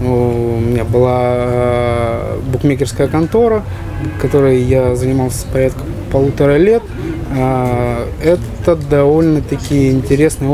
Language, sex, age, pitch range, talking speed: Russian, male, 20-39, 120-135 Hz, 85 wpm